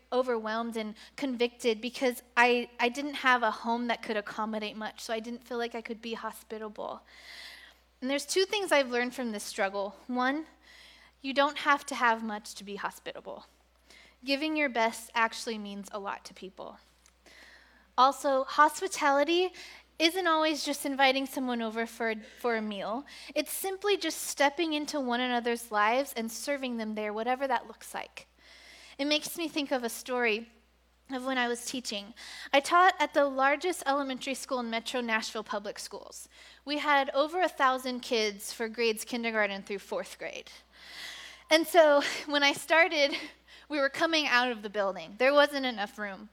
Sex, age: female, 10-29